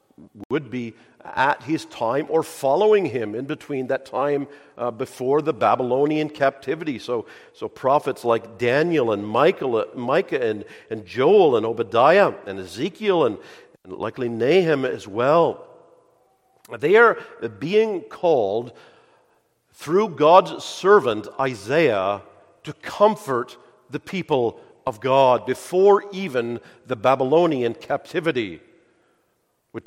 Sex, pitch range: male, 130-195 Hz